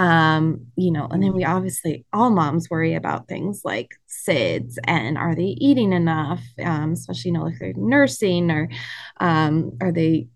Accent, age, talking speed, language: American, 20-39, 175 wpm, English